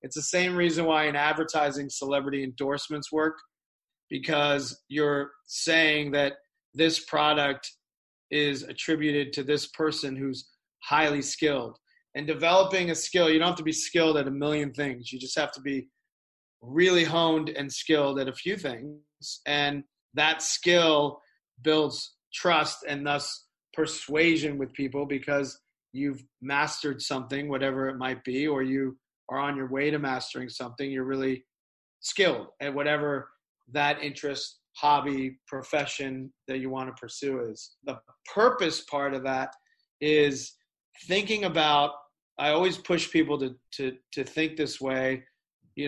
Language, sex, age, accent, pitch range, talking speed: English, male, 30-49, American, 135-155 Hz, 145 wpm